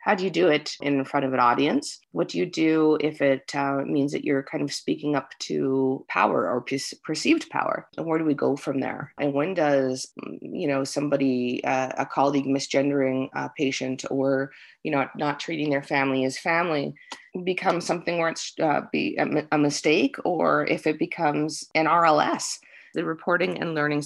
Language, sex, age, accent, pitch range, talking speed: English, female, 30-49, American, 135-155 Hz, 185 wpm